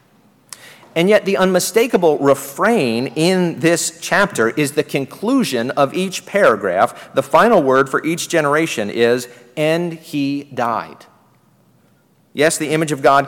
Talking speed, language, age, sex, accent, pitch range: 130 wpm, English, 40-59, male, American, 130-165 Hz